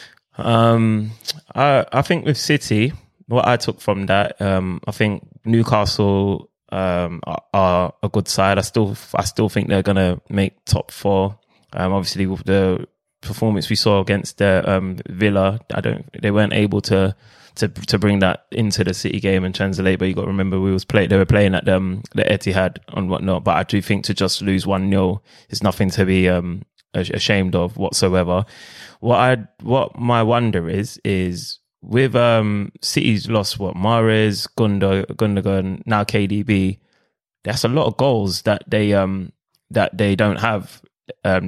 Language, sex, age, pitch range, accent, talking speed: English, male, 20-39, 95-110 Hz, British, 175 wpm